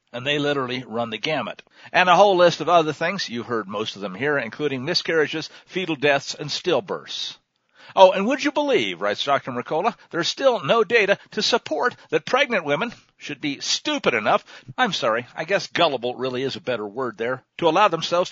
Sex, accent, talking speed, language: male, American, 195 wpm, English